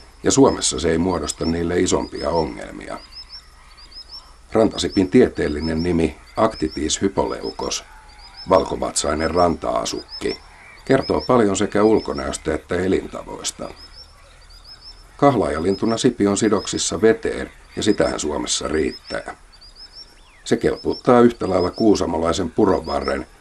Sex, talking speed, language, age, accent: male, 90 wpm, Finnish, 50-69, native